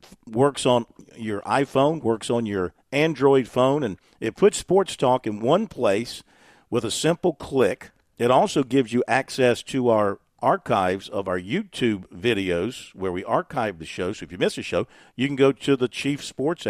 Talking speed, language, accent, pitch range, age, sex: 185 wpm, English, American, 110-140 Hz, 50-69, male